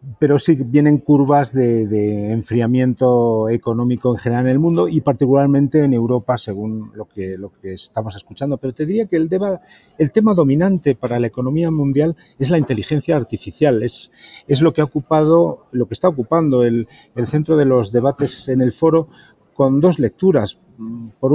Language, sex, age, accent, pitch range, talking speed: Spanish, male, 40-59, Spanish, 115-140 Hz, 180 wpm